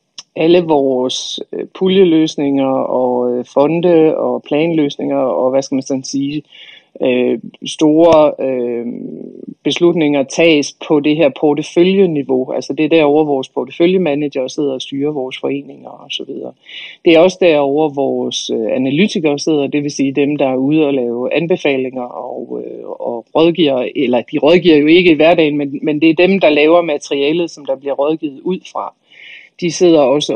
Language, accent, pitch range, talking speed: Danish, native, 135-170 Hz, 160 wpm